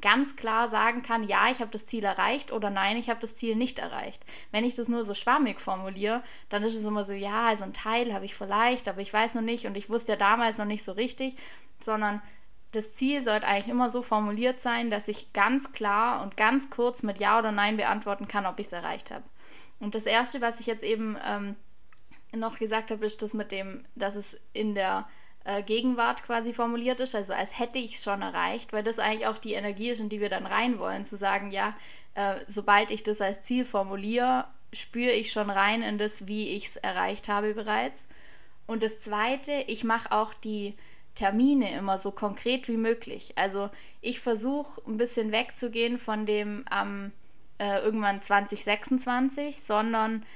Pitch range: 205-235 Hz